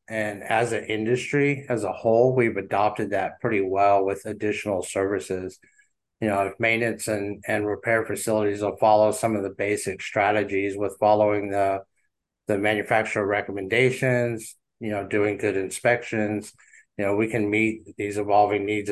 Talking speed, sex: 155 wpm, male